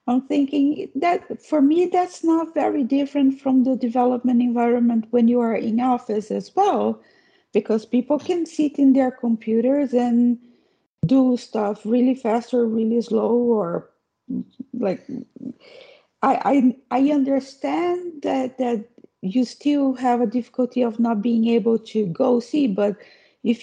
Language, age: English, 50-69